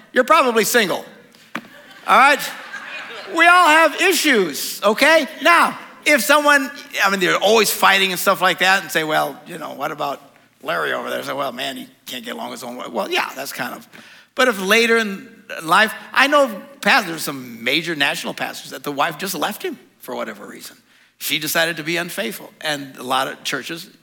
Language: English